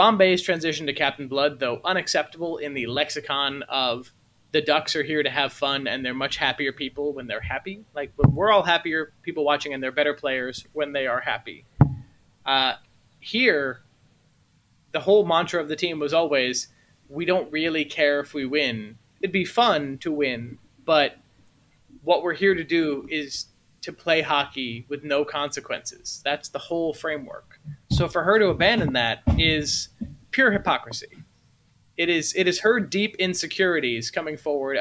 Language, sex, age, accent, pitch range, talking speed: English, male, 30-49, American, 135-170 Hz, 170 wpm